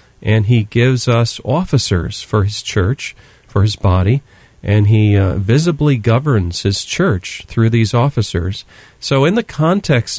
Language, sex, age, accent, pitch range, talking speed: English, male, 40-59, American, 100-125 Hz, 145 wpm